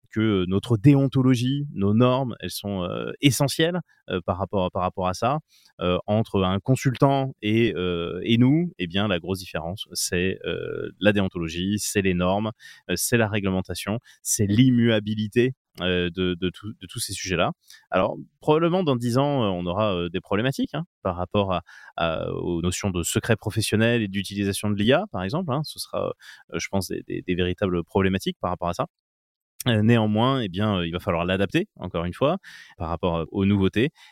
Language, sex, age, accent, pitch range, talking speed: French, male, 20-39, French, 90-125 Hz, 185 wpm